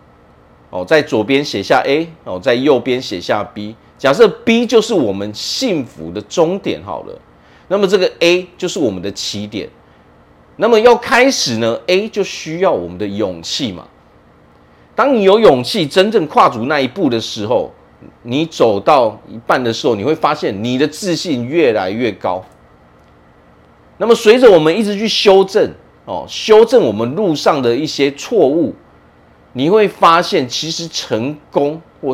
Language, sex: Chinese, male